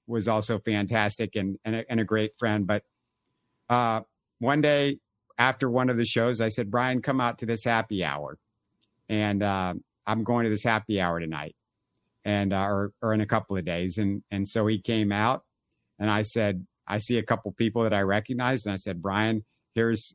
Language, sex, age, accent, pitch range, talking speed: English, male, 50-69, American, 105-120 Hz, 205 wpm